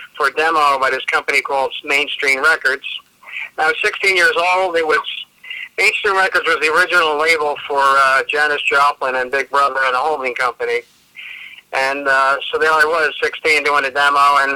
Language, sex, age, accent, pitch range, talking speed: English, male, 50-69, American, 140-200 Hz, 180 wpm